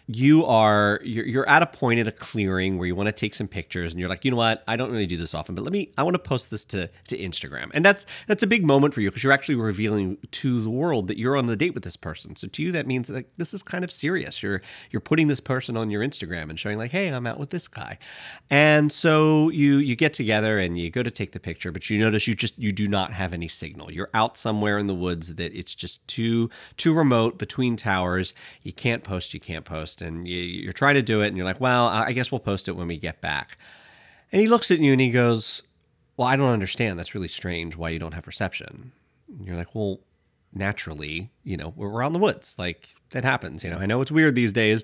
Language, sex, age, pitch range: English, male, 30-49, 90-130 Hz